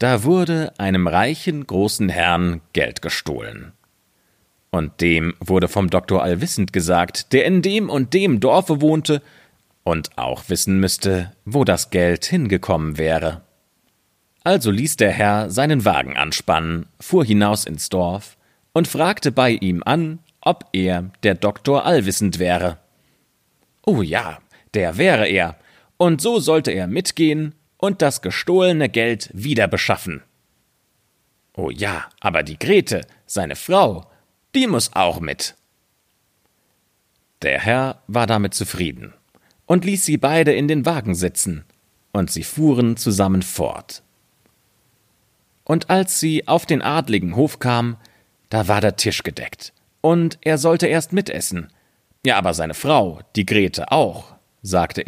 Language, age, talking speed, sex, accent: German, 30-49, 135 wpm, male, German